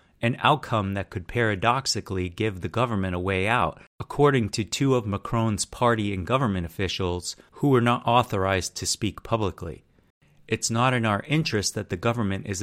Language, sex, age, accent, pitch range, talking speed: English, male, 30-49, American, 95-115 Hz, 170 wpm